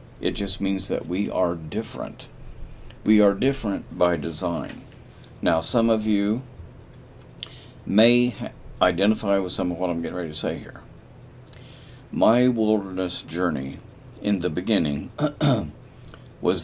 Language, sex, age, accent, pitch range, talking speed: English, male, 50-69, American, 85-125 Hz, 125 wpm